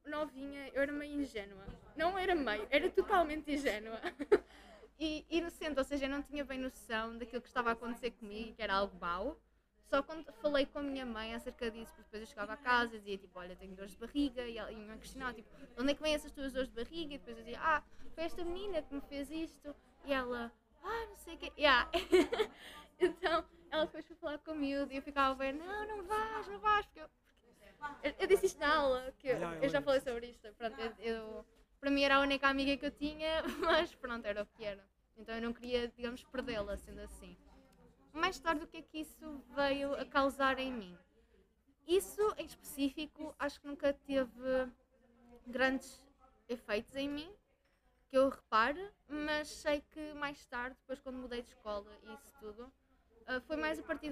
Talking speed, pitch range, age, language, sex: 200 wpm, 235-305 Hz, 20-39, Portuguese, female